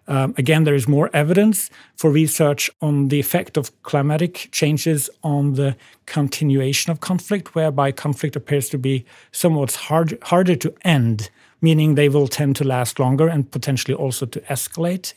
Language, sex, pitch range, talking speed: English, male, 135-160 Hz, 160 wpm